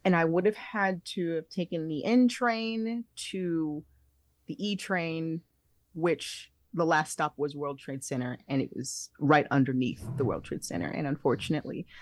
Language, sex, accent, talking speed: English, female, American, 170 wpm